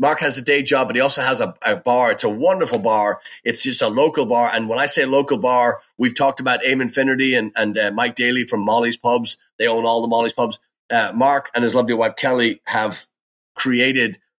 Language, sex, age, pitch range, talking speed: English, male, 40-59, 115-150 Hz, 230 wpm